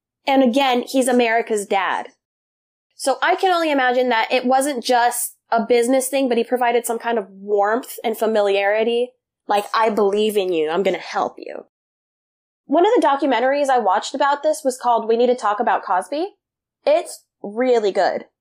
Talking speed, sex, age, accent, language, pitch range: 180 wpm, female, 10-29, American, English, 220-280 Hz